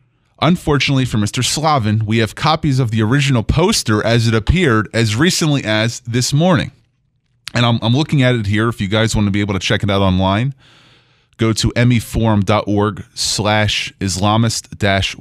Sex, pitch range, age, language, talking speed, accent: male, 110-135 Hz, 30-49, English, 175 wpm, American